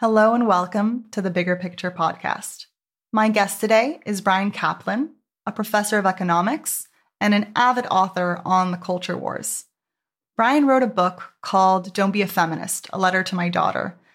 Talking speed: 170 wpm